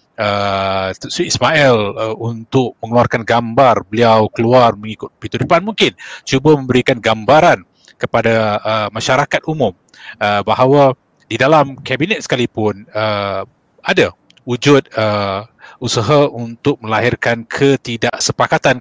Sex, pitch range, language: male, 115-140 Hz, Malay